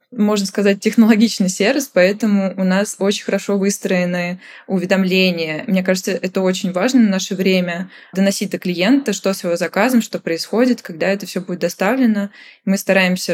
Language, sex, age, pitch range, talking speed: Russian, female, 20-39, 175-205 Hz, 155 wpm